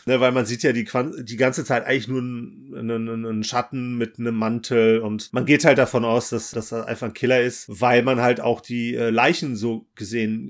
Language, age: German, 30-49